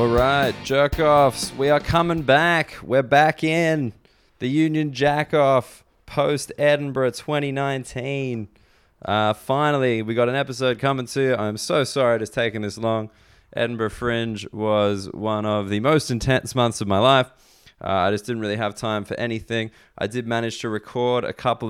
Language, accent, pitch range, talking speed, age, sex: English, Australian, 105-130 Hz, 165 wpm, 20-39, male